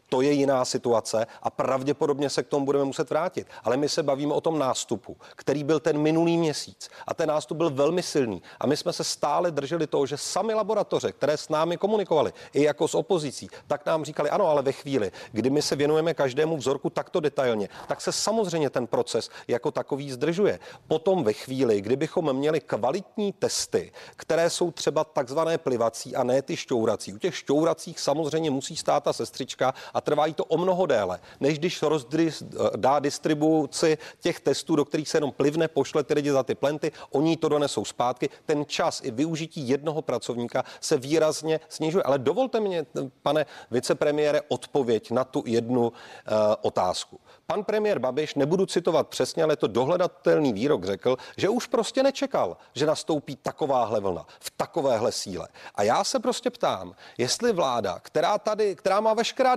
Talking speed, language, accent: 180 wpm, Czech, native